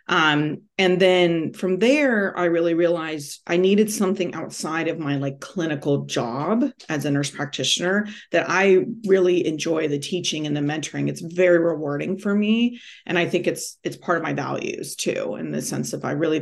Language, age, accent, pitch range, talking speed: English, 30-49, American, 145-185 Hz, 185 wpm